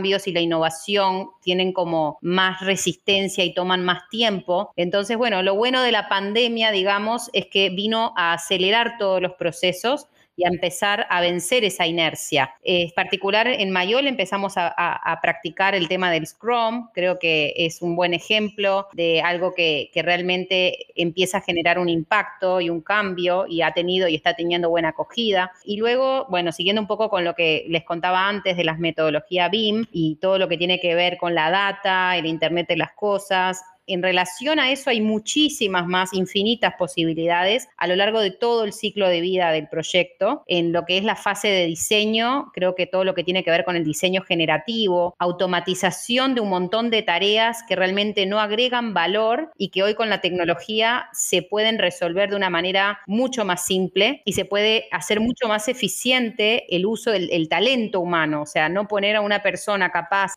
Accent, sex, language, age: Argentinian, female, Spanish, 20-39